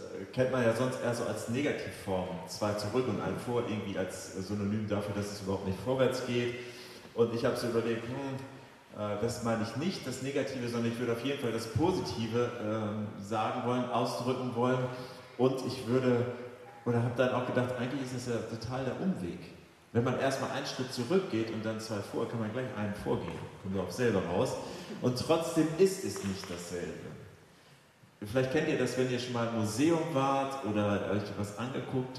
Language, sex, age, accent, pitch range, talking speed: German, male, 30-49, German, 110-150 Hz, 195 wpm